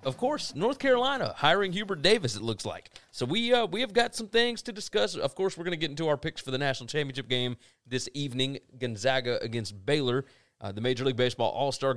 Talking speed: 230 wpm